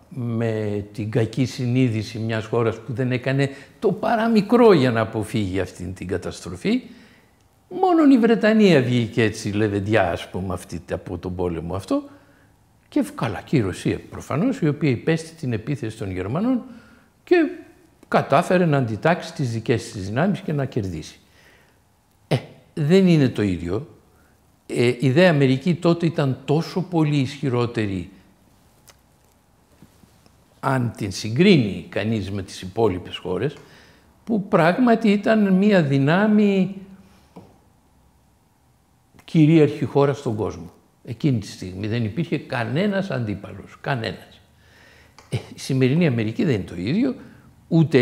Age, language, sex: 60-79, Greek, male